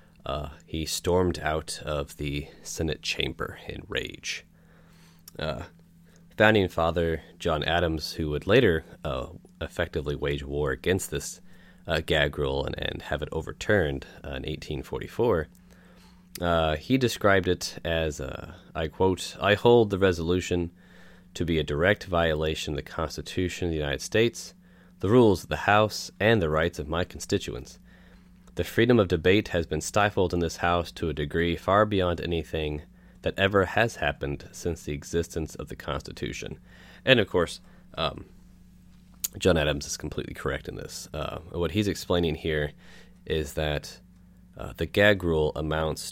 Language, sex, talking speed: English, male, 155 wpm